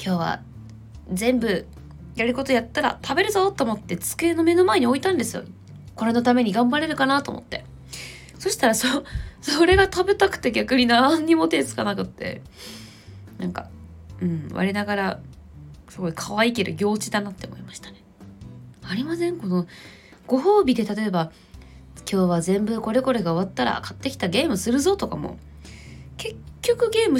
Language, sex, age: Japanese, female, 20-39